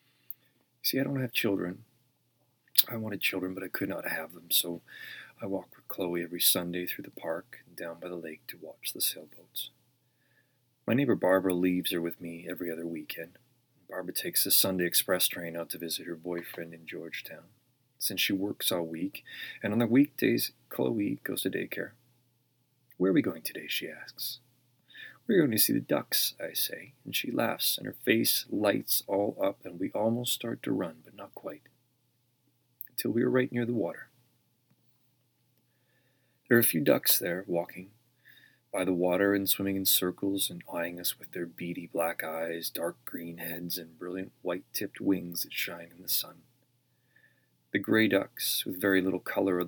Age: 30-49